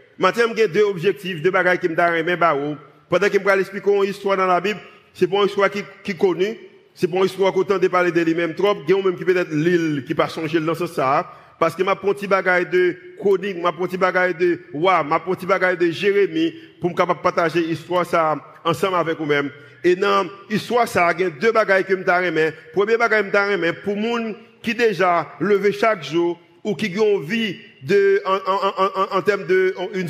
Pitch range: 170-200 Hz